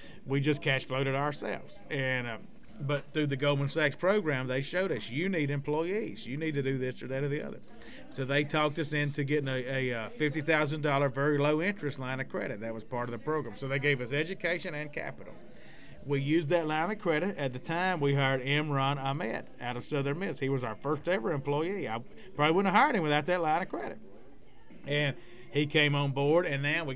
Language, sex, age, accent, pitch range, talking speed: English, male, 30-49, American, 135-170 Hz, 225 wpm